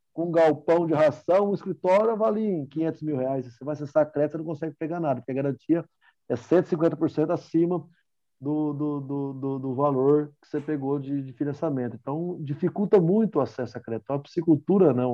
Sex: male